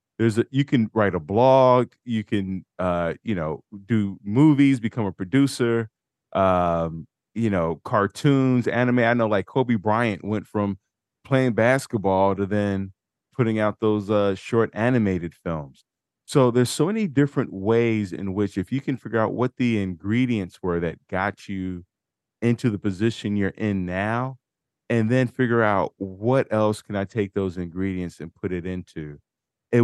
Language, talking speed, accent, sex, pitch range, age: English, 165 wpm, American, male, 95-125 Hz, 30-49